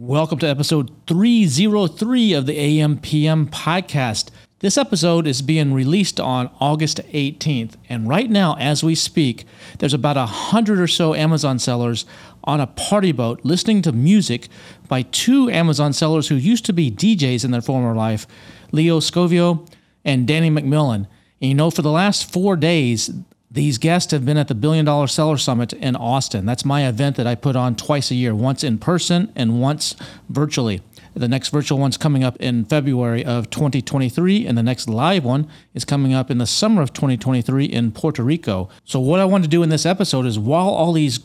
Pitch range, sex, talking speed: 125-165 Hz, male, 190 wpm